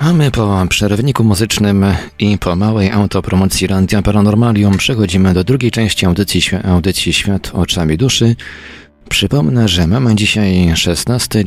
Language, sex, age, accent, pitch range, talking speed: Polish, male, 40-59, native, 90-110 Hz, 130 wpm